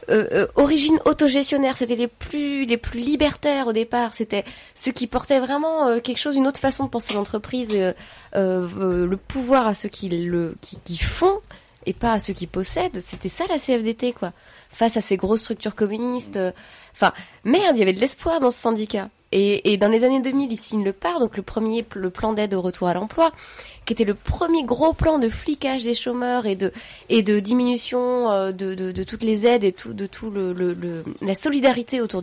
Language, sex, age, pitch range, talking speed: French, female, 20-39, 190-265 Hz, 220 wpm